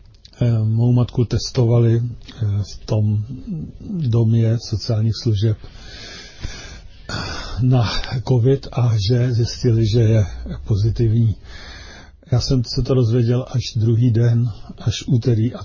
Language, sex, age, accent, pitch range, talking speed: Czech, male, 50-69, native, 110-125 Hz, 105 wpm